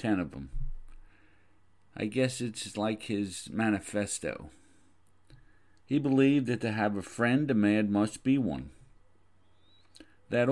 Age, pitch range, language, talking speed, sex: 50-69, 95-115 Hz, English, 125 wpm, male